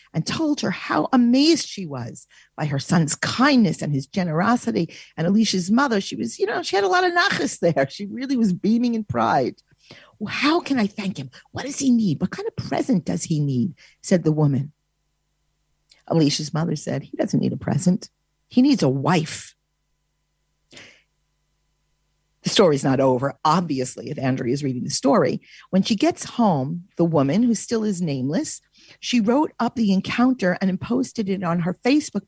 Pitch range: 165-235 Hz